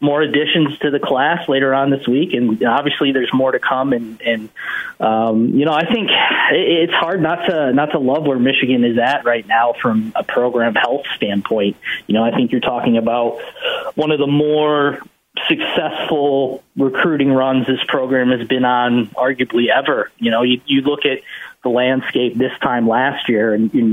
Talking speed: 185 wpm